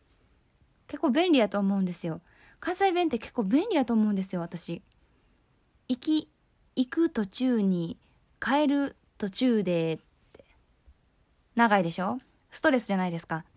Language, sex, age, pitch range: Japanese, female, 20-39, 185-270 Hz